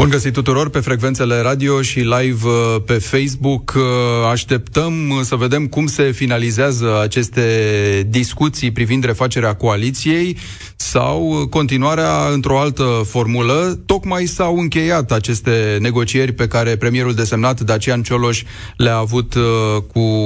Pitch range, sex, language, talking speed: 115-140 Hz, male, Romanian, 120 wpm